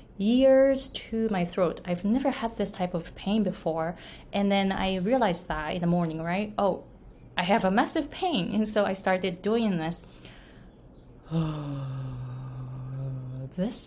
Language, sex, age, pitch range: Japanese, female, 20-39, 170-210 Hz